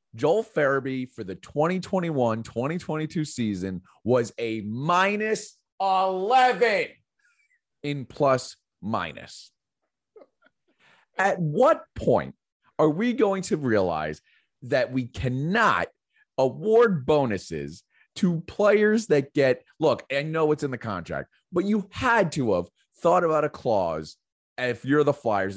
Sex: male